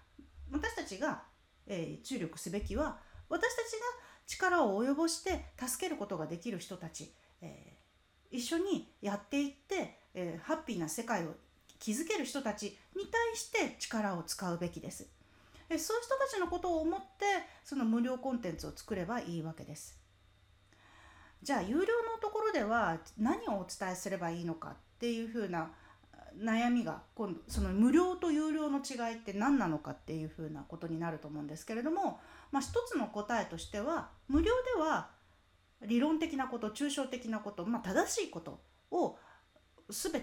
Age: 40-59